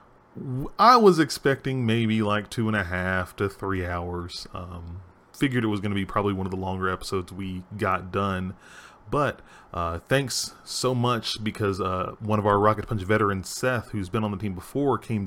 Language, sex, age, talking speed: English, male, 30-49, 195 wpm